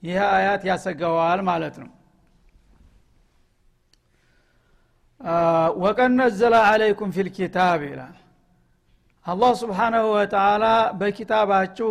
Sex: male